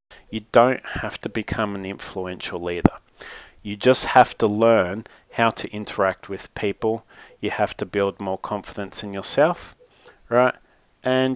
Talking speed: 150 wpm